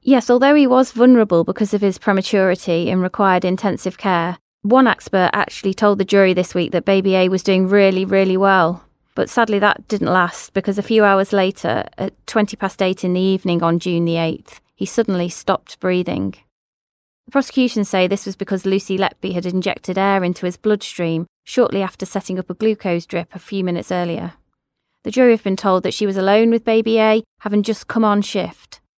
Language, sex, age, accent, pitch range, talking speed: English, female, 20-39, British, 180-215 Hz, 200 wpm